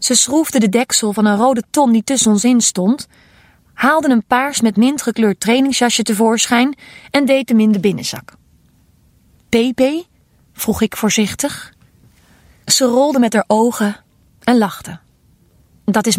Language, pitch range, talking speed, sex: Dutch, 210-265 Hz, 145 wpm, female